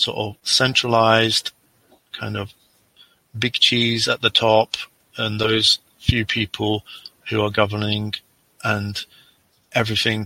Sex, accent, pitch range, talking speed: male, British, 105-115 Hz, 110 wpm